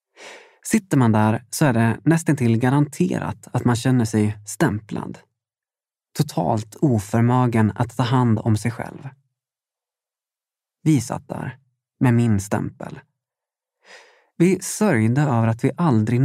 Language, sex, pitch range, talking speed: Swedish, male, 115-160 Hz, 125 wpm